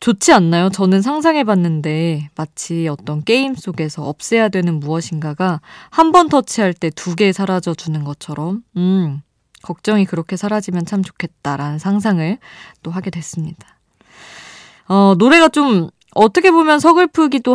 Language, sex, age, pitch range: Korean, female, 20-39, 165-235 Hz